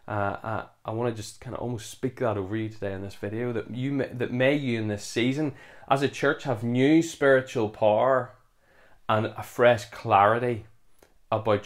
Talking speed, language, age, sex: 195 wpm, English, 20-39, male